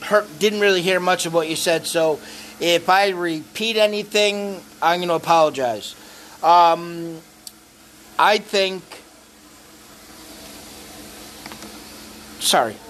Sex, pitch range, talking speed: male, 155-190 Hz, 105 wpm